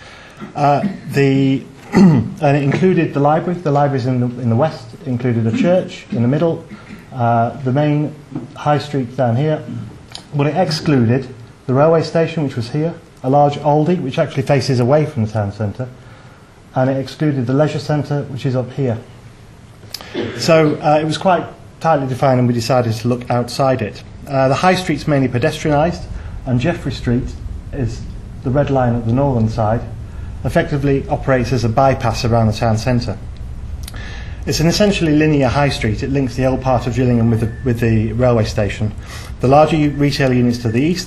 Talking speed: 180 wpm